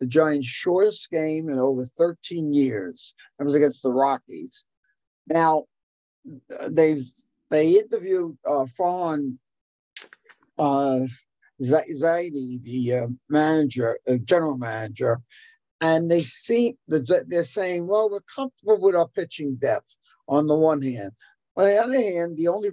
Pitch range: 135-175 Hz